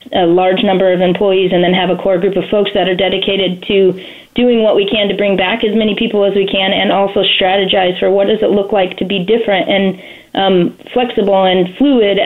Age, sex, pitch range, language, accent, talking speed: 30-49, female, 190-220 Hz, English, American, 230 wpm